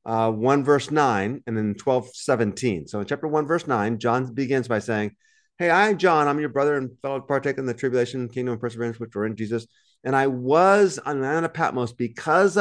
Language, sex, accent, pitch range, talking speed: English, male, American, 105-135 Hz, 215 wpm